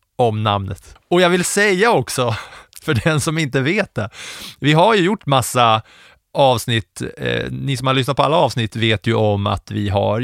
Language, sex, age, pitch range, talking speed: English, male, 30-49, 105-145 Hz, 190 wpm